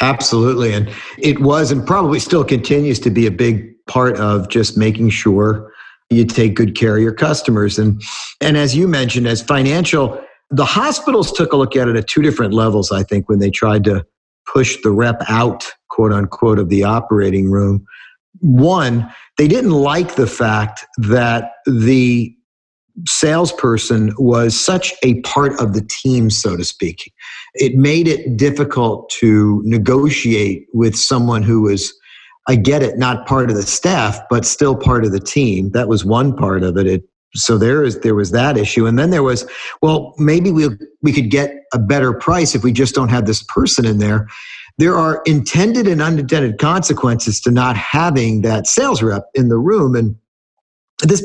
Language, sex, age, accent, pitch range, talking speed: English, male, 50-69, American, 110-140 Hz, 180 wpm